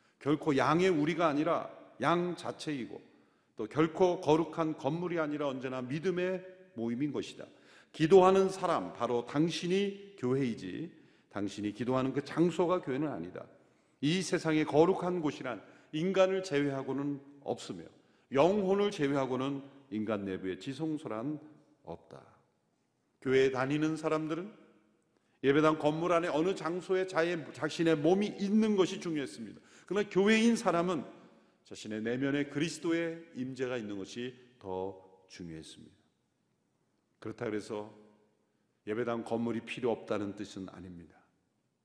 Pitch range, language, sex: 115-165 Hz, Korean, male